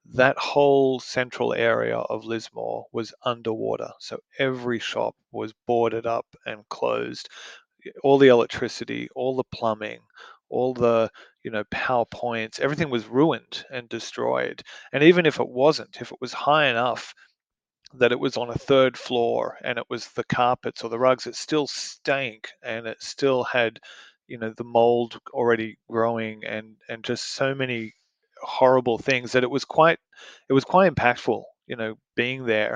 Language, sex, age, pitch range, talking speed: English, male, 30-49, 115-130 Hz, 165 wpm